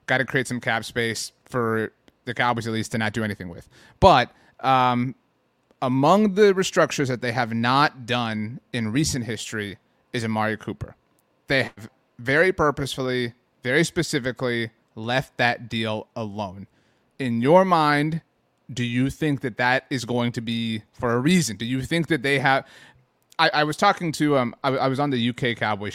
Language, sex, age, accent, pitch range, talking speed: English, male, 30-49, American, 115-140 Hz, 180 wpm